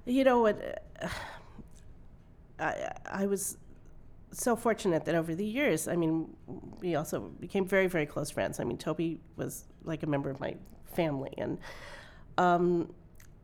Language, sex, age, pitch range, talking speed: English, female, 40-59, 155-180 Hz, 150 wpm